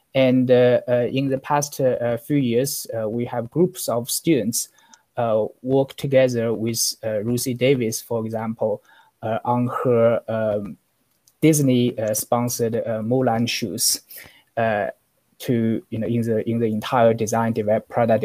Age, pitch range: 20-39, 110-130 Hz